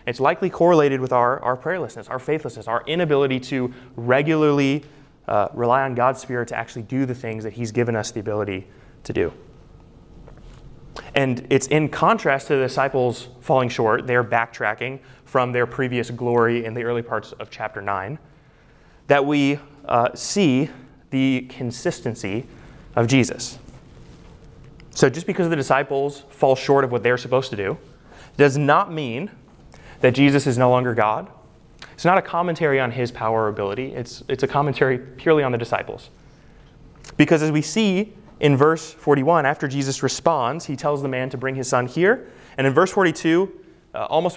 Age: 20-39